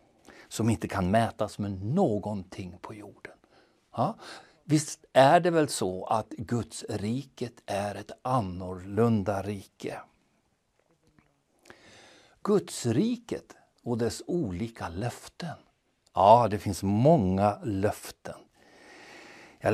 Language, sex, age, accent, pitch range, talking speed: Swedish, male, 60-79, native, 105-145 Hz, 100 wpm